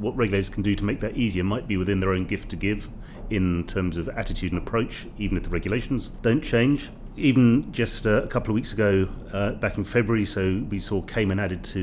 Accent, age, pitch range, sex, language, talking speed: British, 40-59, 95-115 Hz, male, English, 230 wpm